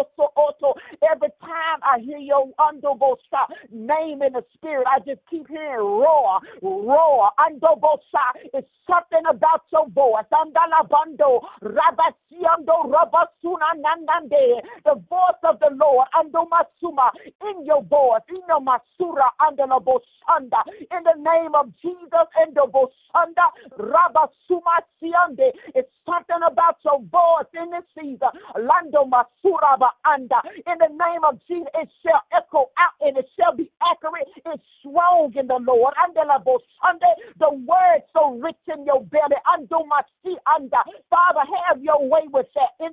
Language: English